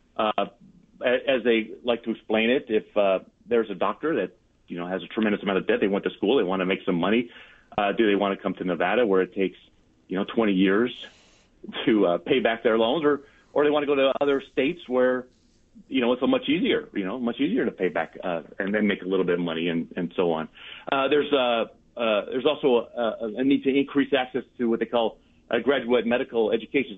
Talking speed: 240 wpm